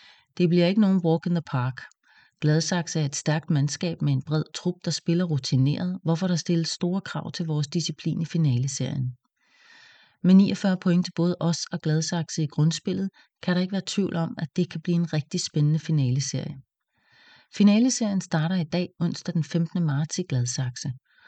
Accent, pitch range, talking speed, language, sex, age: Danish, 150-185 Hz, 180 wpm, English, female, 30-49